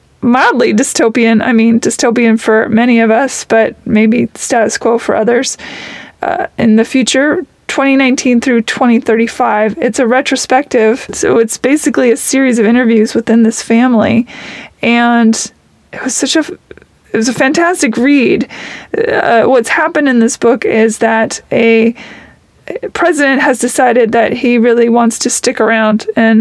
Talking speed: 150 wpm